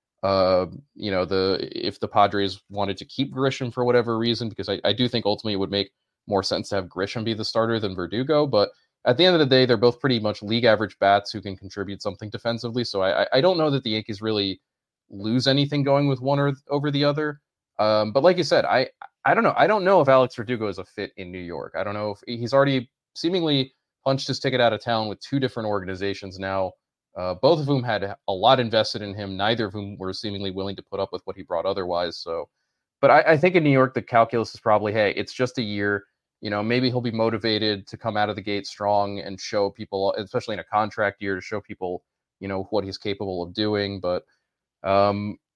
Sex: male